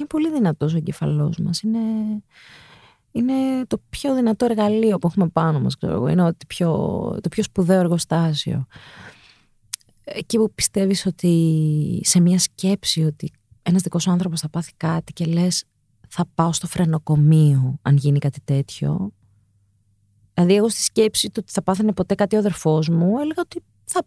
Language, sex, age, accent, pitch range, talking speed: Greek, female, 30-49, native, 150-210 Hz, 155 wpm